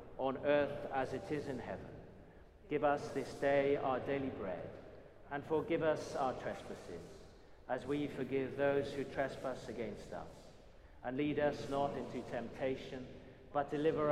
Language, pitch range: English, 120-145 Hz